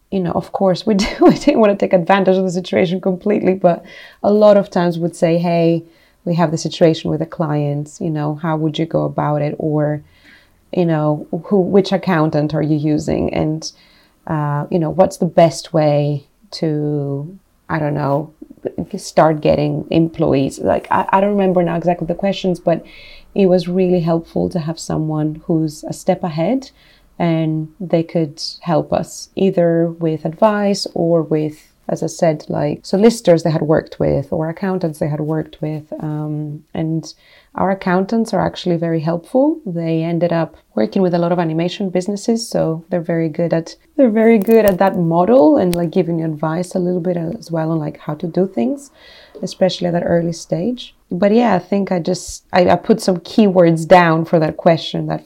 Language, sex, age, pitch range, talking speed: English, female, 30-49, 160-190 Hz, 190 wpm